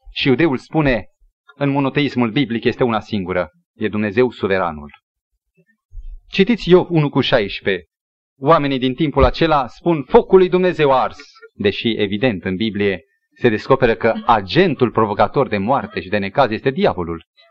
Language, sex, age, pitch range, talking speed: Romanian, male, 30-49, 115-195 Hz, 145 wpm